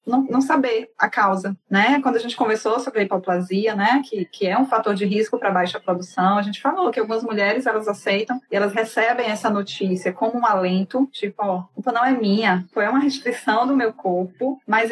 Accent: Brazilian